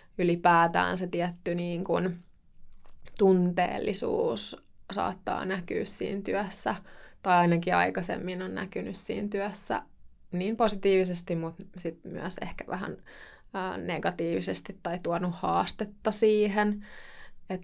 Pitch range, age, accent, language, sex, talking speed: 165-195 Hz, 20-39, native, Finnish, female, 100 wpm